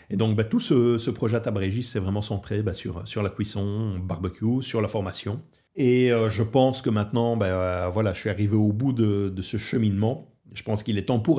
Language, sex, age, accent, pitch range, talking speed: French, male, 40-59, French, 100-125 Hz, 235 wpm